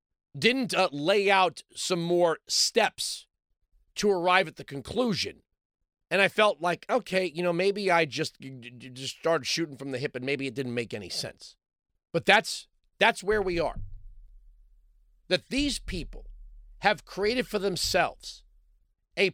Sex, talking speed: male, 150 wpm